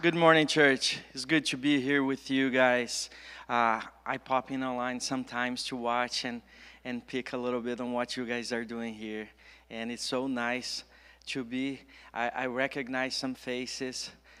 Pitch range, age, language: 125-150 Hz, 20-39, English